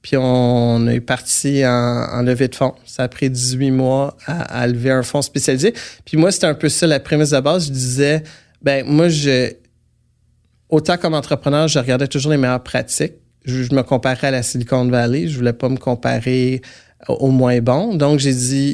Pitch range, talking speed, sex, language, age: 120-140 Hz, 205 wpm, male, French, 30-49